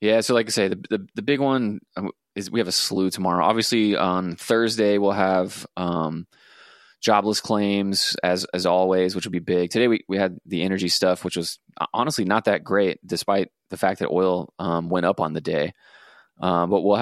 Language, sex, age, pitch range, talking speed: English, male, 20-39, 85-100 Hz, 210 wpm